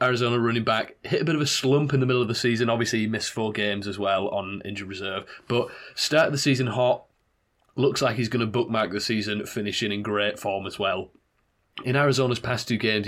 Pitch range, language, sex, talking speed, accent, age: 100-115 Hz, English, male, 225 wpm, British, 20-39